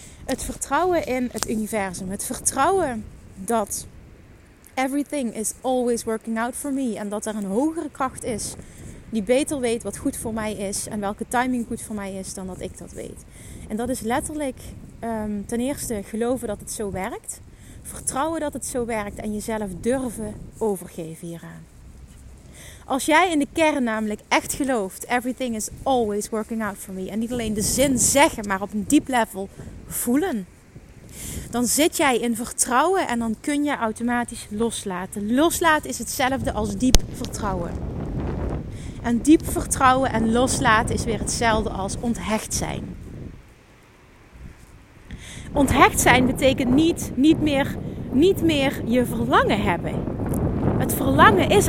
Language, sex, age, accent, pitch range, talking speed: Dutch, female, 30-49, Dutch, 210-265 Hz, 150 wpm